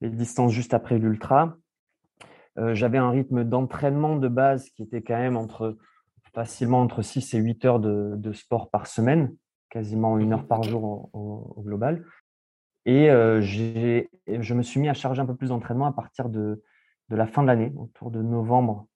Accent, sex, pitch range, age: French, male, 110-130 Hz, 20-39